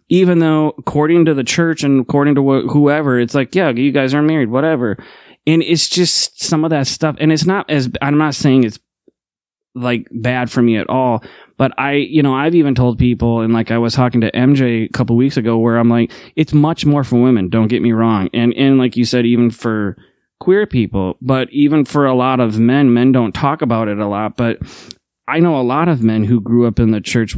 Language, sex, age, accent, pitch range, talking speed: English, male, 20-39, American, 115-140 Hz, 235 wpm